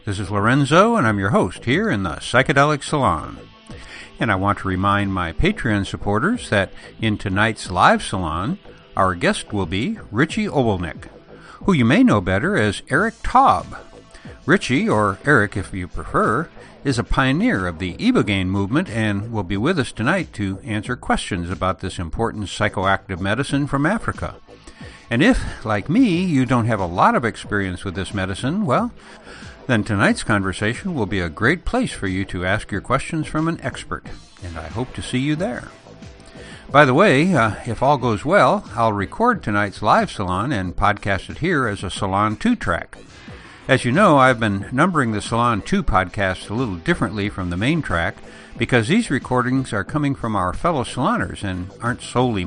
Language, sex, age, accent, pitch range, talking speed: English, male, 60-79, American, 95-130 Hz, 180 wpm